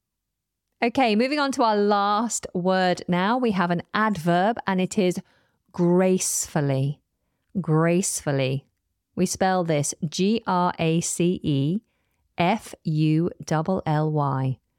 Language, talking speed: English, 85 wpm